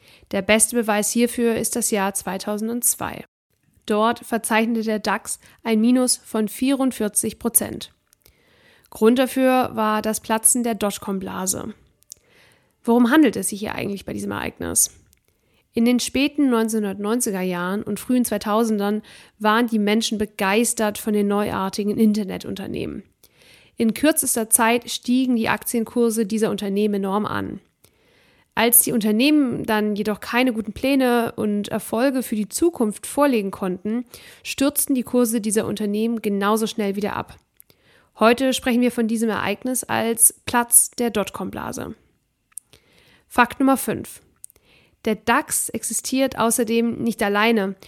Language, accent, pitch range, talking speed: German, German, 210-240 Hz, 125 wpm